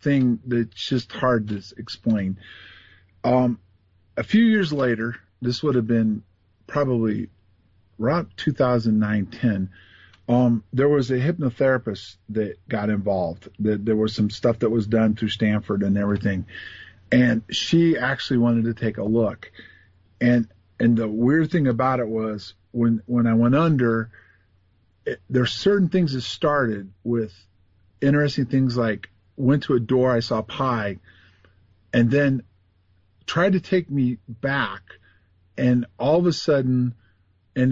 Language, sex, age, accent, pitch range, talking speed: English, male, 50-69, American, 105-130 Hz, 145 wpm